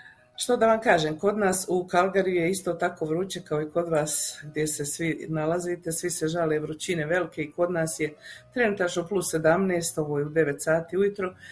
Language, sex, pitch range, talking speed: Croatian, female, 155-195 Hz, 200 wpm